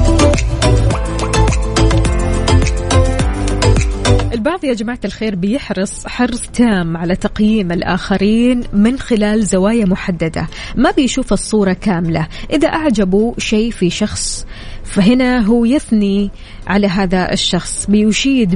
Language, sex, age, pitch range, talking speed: Arabic, female, 20-39, 185-230 Hz, 95 wpm